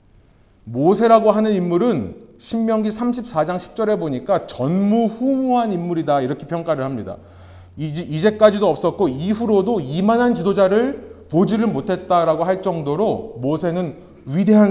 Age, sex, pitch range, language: 30-49, male, 140-220 Hz, Korean